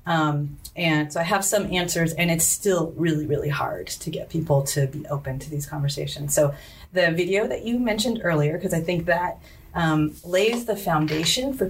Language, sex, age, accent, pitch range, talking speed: English, female, 30-49, American, 145-180 Hz, 195 wpm